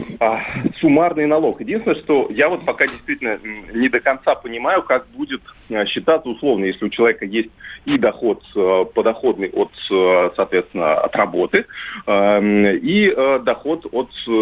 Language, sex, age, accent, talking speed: Russian, male, 30-49, native, 125 wpm